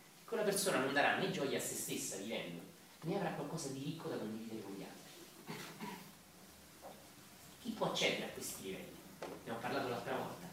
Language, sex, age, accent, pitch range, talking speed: Italian, male, 40-59, native, 125-170 Hz, 175 wpm